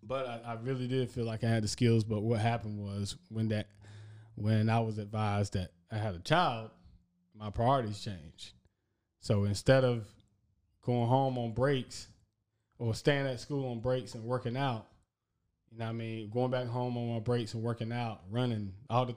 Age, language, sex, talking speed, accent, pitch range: 20-39, English, male, 195 wpm, American, 105-125 Hz